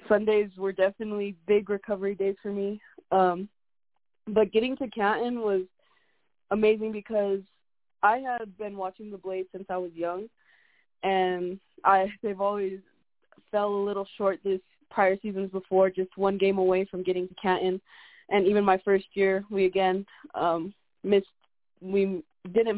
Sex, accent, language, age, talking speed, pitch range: female, American, English, 20-39, 150 wpm, 190-215 Hz